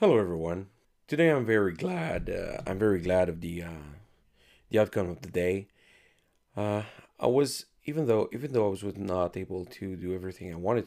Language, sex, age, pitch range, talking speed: English, male, 30-49, 90-110 Hz, 190 wpm